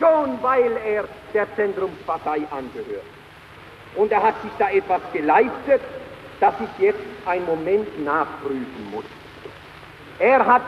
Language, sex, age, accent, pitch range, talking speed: German, male, 50-69, German, 200-260 Hz, 125 wpm